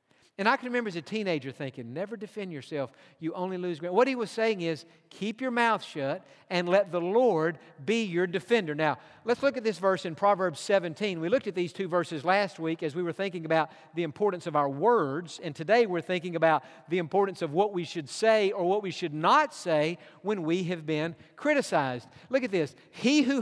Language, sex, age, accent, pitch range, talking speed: English, male, 50-69, American, 165-230 Hz, 220 wpm